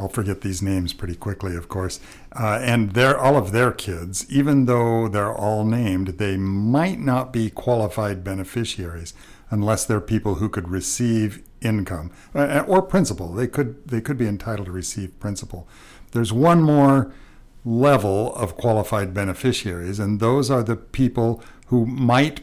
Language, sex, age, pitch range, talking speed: English, male, 60-79, 95-120 Hz, 155 wpm